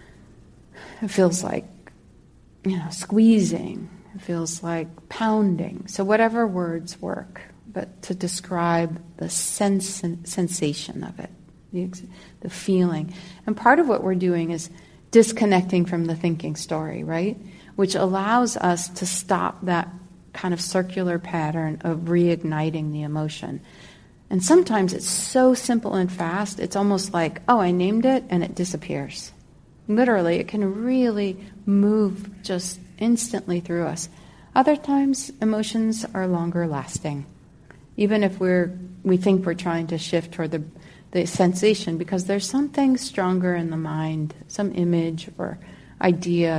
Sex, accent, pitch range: female, American, 170-200 Hz